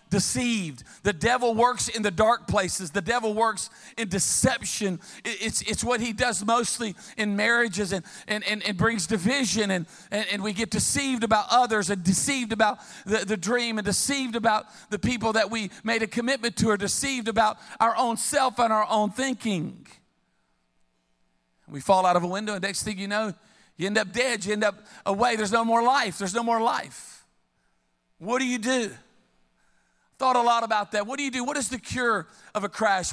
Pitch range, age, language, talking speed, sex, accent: 205-245 Hz, 50-69, English, 195 wpm, male, American